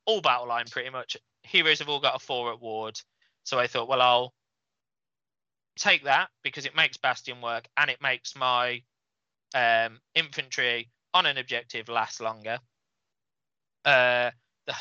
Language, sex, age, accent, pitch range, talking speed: English, male, 20-39, British, 120-145 Hz, 155 wpm